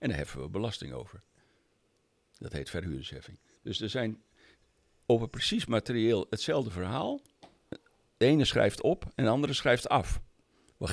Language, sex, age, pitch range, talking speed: Dutch, male, 60-79, 90-130 Hz, 150 wpm